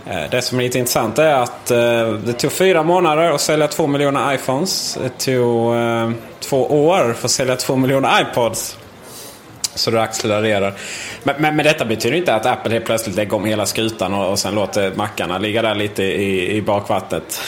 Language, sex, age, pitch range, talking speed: Swedish, male, 20-39, 105-125 Hz, 190 wpm